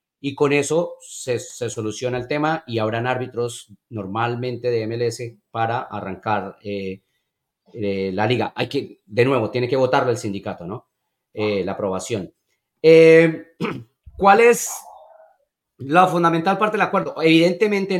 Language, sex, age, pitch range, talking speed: Spanish, male, 30-49, 125-170 Hz, 140 wpm